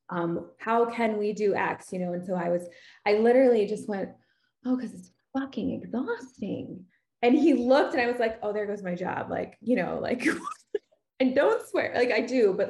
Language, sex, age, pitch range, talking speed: English, female, 20-39, 185-240 Hz, 205 wpm